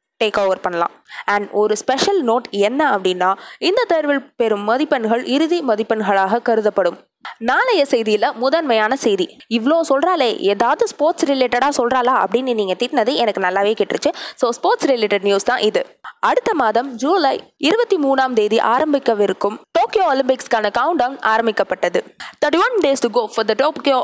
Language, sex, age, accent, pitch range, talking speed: Tamil, female, 20-39, native, 210-295 Hz, 85 wpm